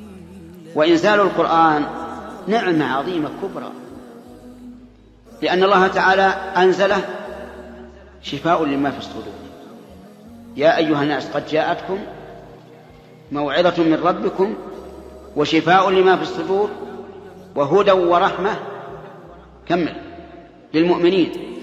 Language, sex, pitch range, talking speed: Arabic, male, 160-205 Hz, 80 wpm